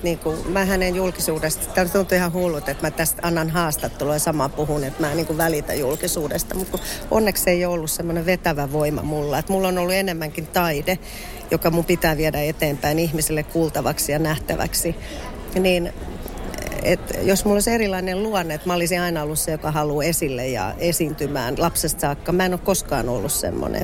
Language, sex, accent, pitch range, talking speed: Finnish, female, native, 155-185 Hz, 185 wpm